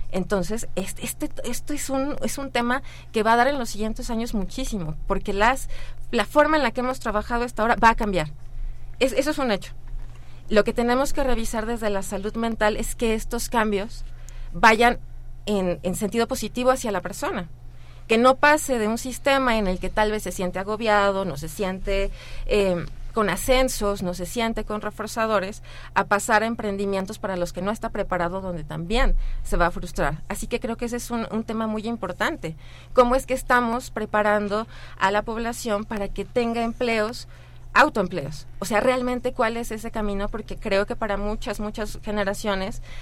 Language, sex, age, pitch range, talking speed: Spanish, female, 30-49, 185-235 Hz, 190 wpm